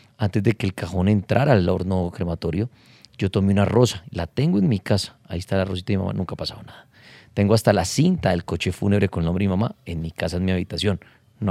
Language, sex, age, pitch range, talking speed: Spanish, male, 30-49, 100-135 Hz, 255 wpm